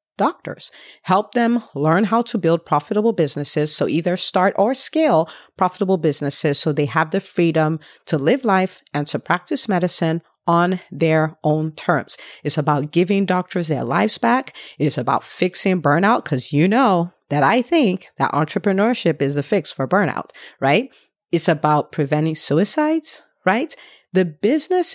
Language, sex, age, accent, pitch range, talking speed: English, female, 40-59, American, 150-220 Hz, 155 wpm